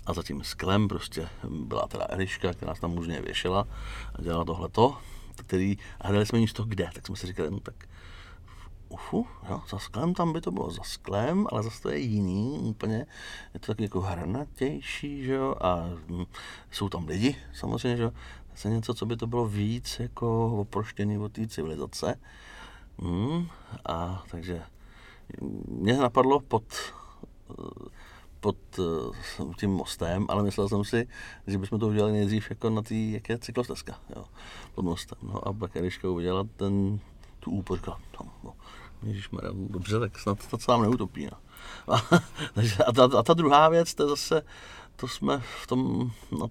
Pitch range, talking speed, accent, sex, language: 90-115 Hz, 165 wpm, native, male, Czech